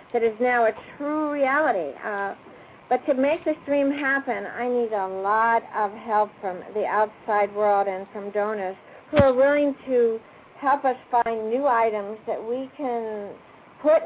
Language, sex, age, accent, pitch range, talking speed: English, female, 50-69, American, 220-265 Hz, 165 wpm